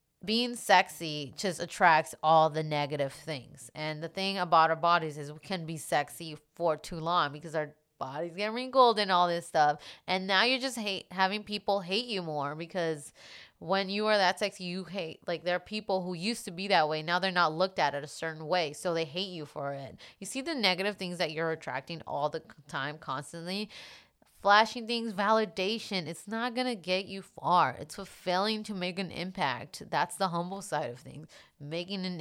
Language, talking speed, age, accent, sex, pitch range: English, 205 wpm, 20-39, American, female, 155-195 Hz